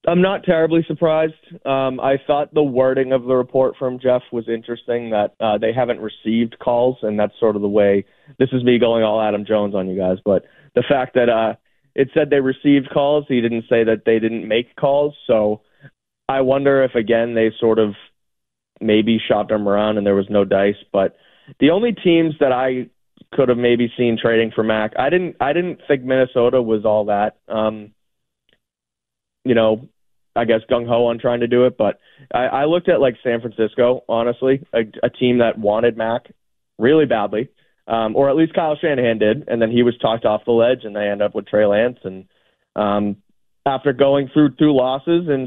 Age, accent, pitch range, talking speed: 20-39, American, 110-130 Hz, 205 wpm